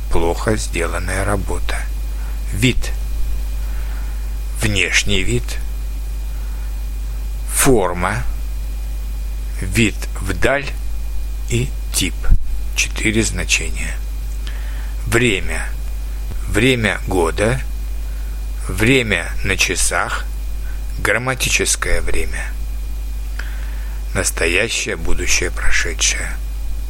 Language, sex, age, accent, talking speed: Russian, male, 60-79, native, 55 wpm